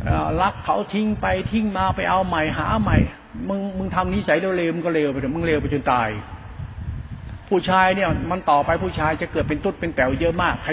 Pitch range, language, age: 155-195 Hz, Thai, 60-79